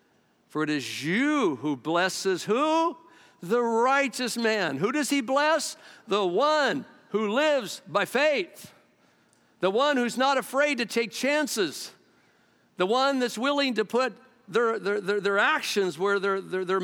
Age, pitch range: 50-69, 145-225 Hz